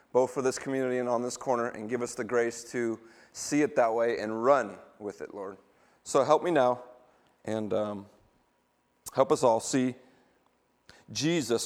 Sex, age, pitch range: male, 30-49, 130-175 Hz